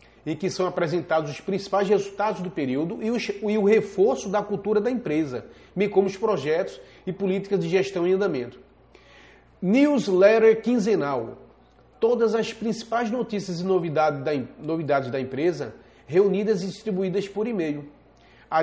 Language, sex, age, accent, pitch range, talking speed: Portuguese, male, 30-49, Brazilian, 165-200 Hz, 135 wpm